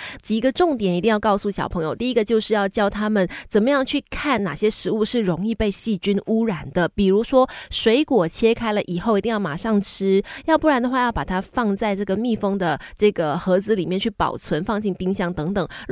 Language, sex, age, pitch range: Chinese, female, 20-39, 185-235 Hz